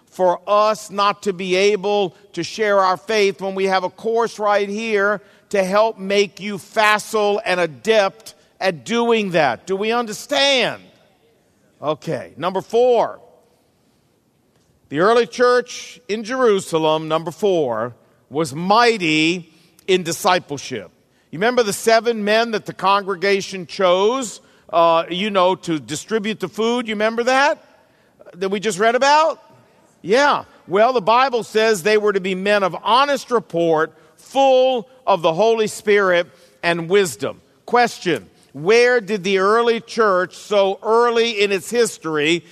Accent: American